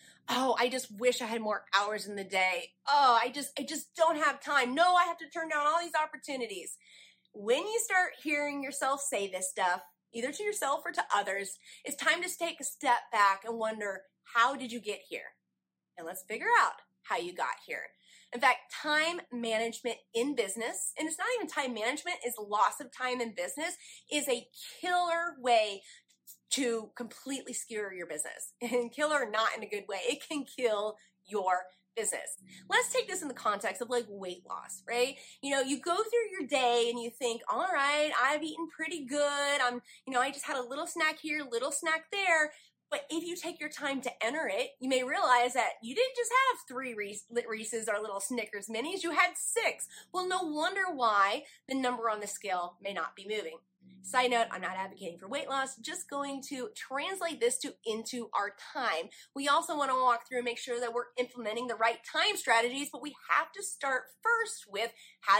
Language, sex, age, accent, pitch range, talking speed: English, female, 30-49, American, 225-305 Hz, 205 wpm